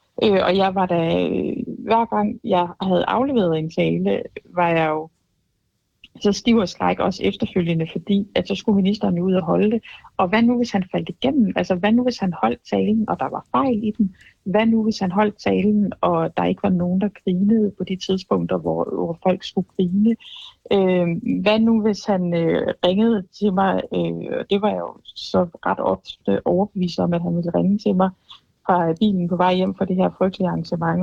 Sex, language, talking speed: female, Danish, 205 wpm